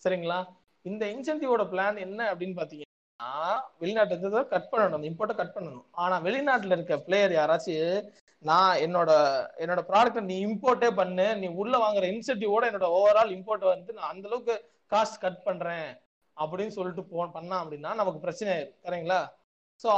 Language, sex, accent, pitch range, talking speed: Tamil, male, native, 175-215 Hz, 145 wpm